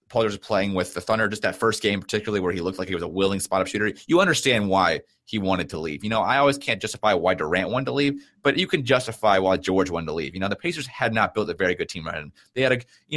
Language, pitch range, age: English, 95-115 Hz, 30-49